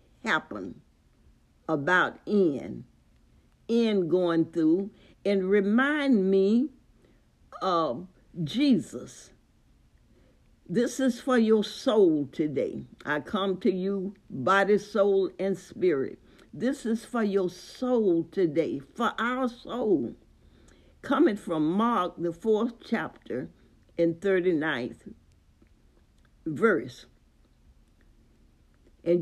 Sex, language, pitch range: female, English, 170-230 Hz